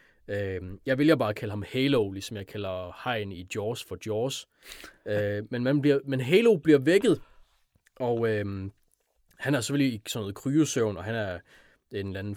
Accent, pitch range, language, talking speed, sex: native, 100-135 Hz, Danish, 160 wpm, male